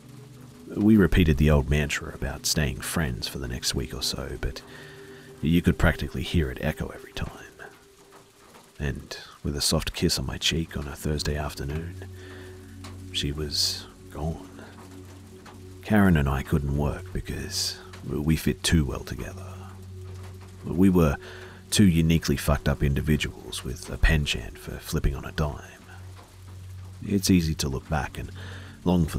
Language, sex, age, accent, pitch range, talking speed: English, male, 40-59, Australian, 75-95 Hz, 150 wpm